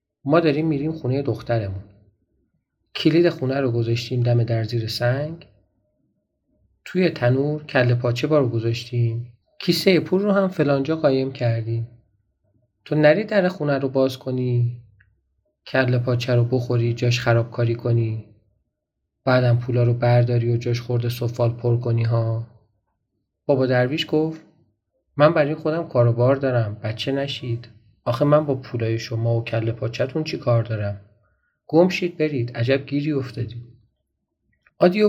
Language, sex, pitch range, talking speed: Persian, male, 115-150 Hz, 140 wpm